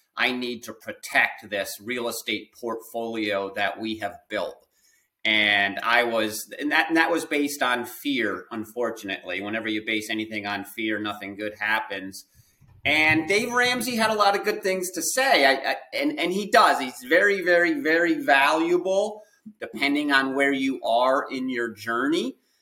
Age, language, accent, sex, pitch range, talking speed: 30-49, English, American, male, 115-165 Hz, 165 wpm